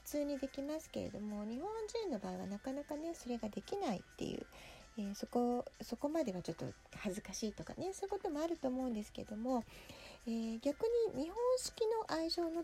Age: 40-59